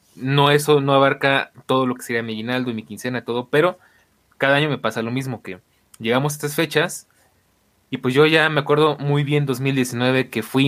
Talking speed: 210 wpm